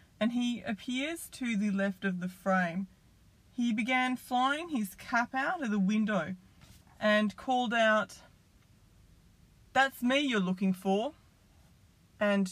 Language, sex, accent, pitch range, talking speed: English, female, Australian, 180-225 Hz, 130 wpm